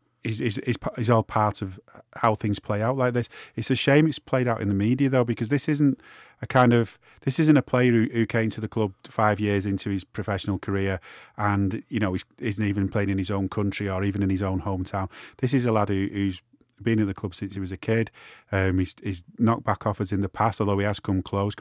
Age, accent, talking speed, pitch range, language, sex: 30-49, British, 250 wpm, 100-125 Hz, English, male